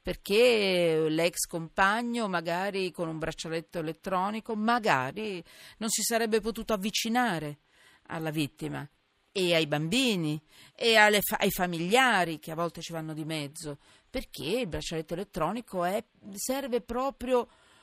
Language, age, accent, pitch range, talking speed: Italian, 40-59, native, 145-215 Hz, 120 wpm